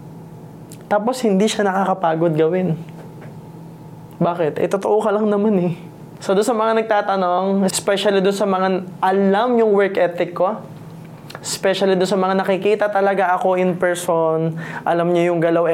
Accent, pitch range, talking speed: native, 155-190 Hz, 150 wpm